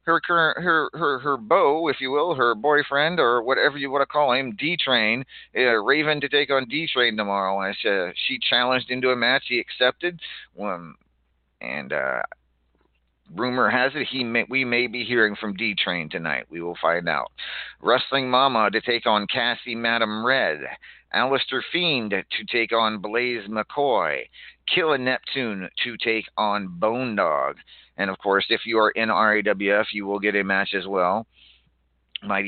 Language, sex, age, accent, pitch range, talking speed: English, male, 40-59, American, 100-120 Hz, 175 wpm